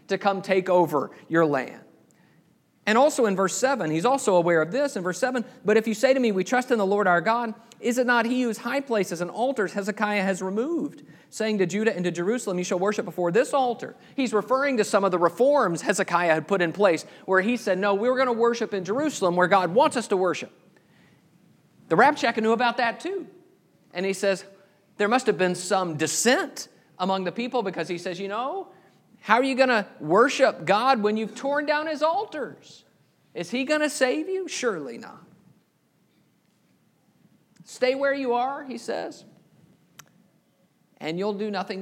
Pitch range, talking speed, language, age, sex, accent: 185-245 Hz, 200 wpm, English, 40-59, male, American